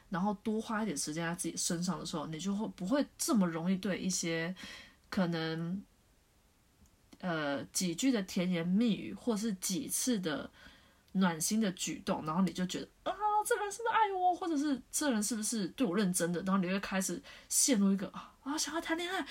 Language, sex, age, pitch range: Chinese, female, 20-39, 180-255 Hz